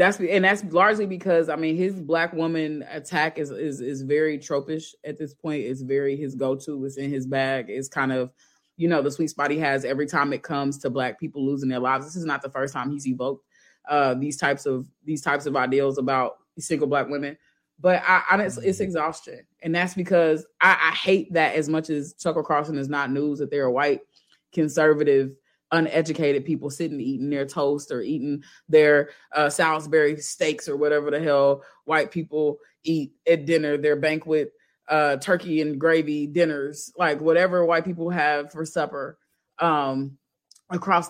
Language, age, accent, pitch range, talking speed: English, 20-39, American, 140-160 Hz, 185 wpm